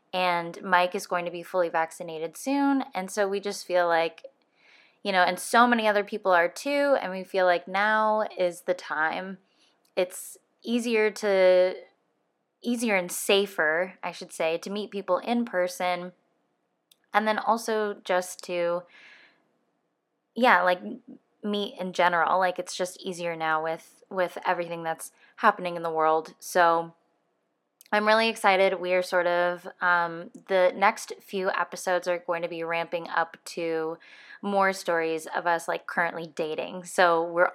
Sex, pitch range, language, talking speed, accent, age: female, 170-200 Hz, English, 155 wpm, American, 10-29